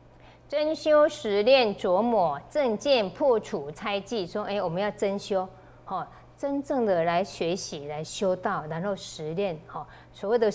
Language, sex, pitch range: Chinese, female, 185-245 Hz